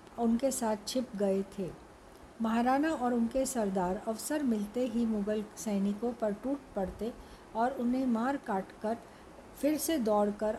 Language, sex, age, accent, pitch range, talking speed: Hindi, female, 60-79, native, 210-265 Hz, 140 wpm